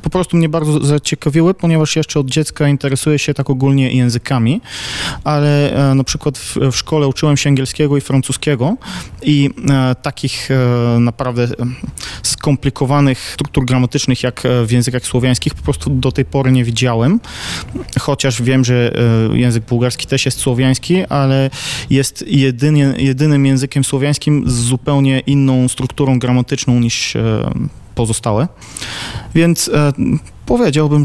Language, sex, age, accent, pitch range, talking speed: Polish, male, 20-39, native, 120-145 Hz, 125 wpm